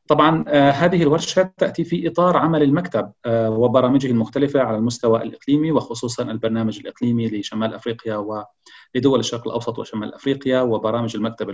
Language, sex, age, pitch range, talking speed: Arabic, male, 40-59, 110-140 Hz, 140 wpm